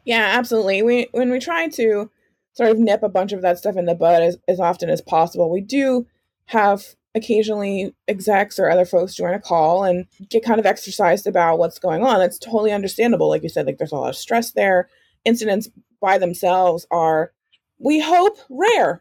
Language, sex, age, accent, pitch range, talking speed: English, female, 20-39, American, 180-230 Hz, 200 wpm